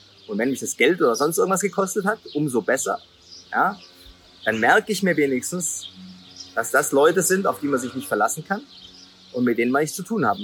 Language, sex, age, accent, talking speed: German, male, 30-49, German, 215 wpm